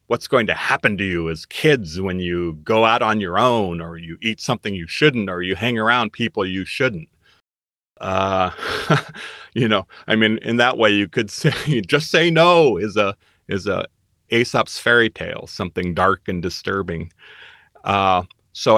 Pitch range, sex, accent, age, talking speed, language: 90-115 Hz, male, American, 30-49, 175 wpm, English